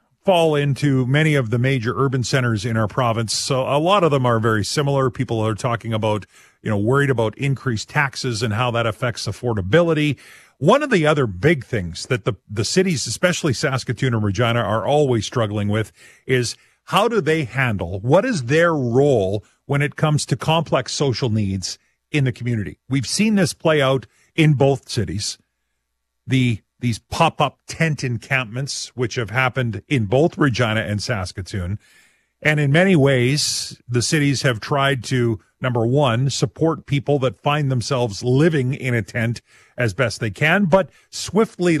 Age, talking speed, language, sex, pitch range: 40-59, 170 wpm, English, male, 115-145 Hz